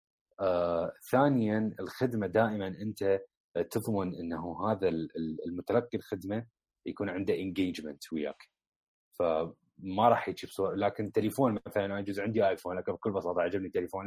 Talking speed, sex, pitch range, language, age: 120 wpm, male, 85-110 Hz, Arabic, 30-49